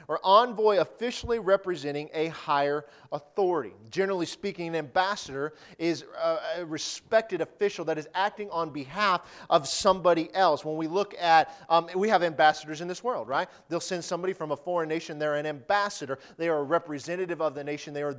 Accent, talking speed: American, 180 wpm